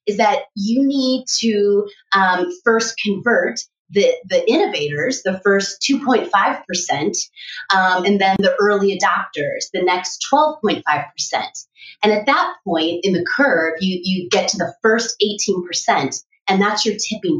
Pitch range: 190-250 Hz